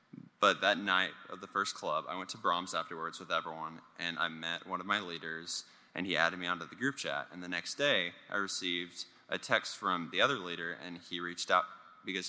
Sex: male